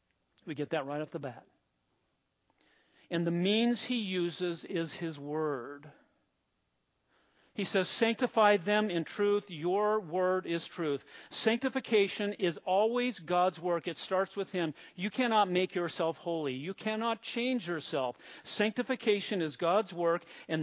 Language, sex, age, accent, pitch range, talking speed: English, male, 50-69, American, 150-195 Hz, 140 wpm